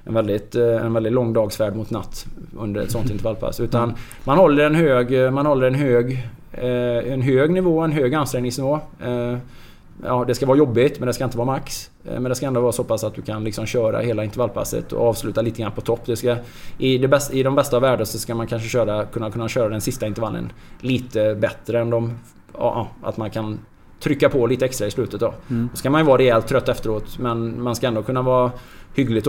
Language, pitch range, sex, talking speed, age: English, 110-125 Hz, male, 220 wpm, 20-39